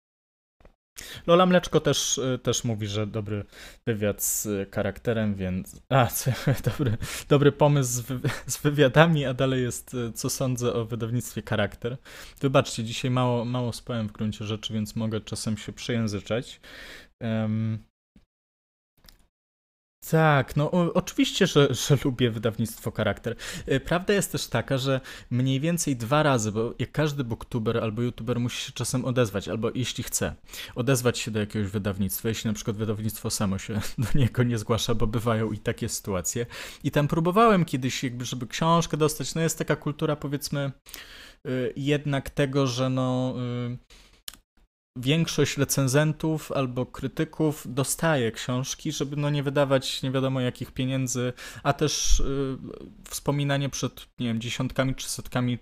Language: Polish